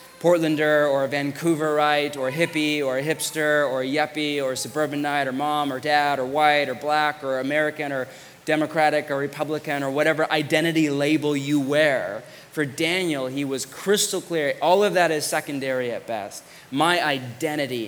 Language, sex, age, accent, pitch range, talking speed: English, male, 20-39, American, 135-160 Hz, 170 wpm